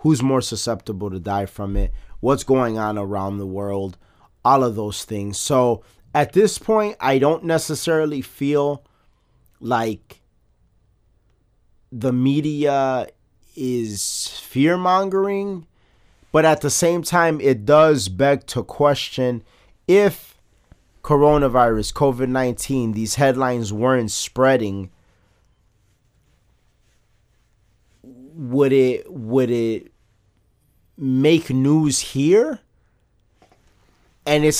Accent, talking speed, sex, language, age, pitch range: American, 100 wpm, male, English, 30-49, 110-140 Hz